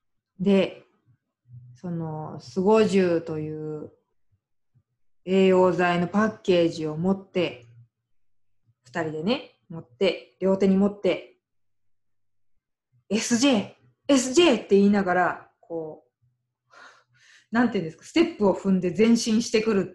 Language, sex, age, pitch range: Japanese, female, 20-39, 125-195 Hz